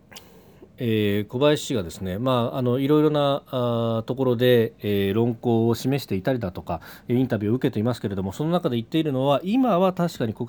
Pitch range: 105-155 Hz